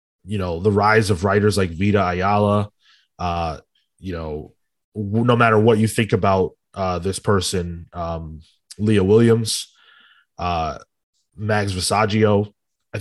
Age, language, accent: 30-49, English, American